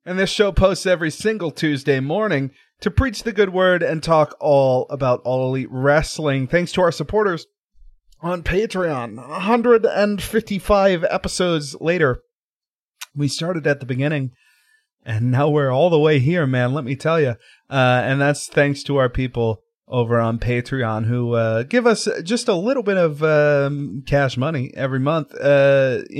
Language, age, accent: English, 30-49, American